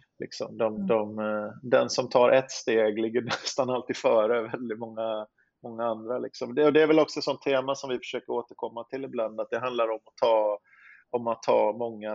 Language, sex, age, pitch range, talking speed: Swedish, male, 20-39, 105-130 Hz, 200 wpm